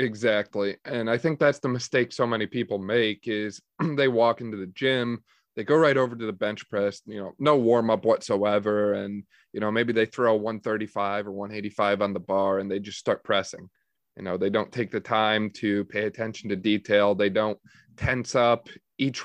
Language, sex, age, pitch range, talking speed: English, male, 20-39, 105-125 Hz, 205 wpm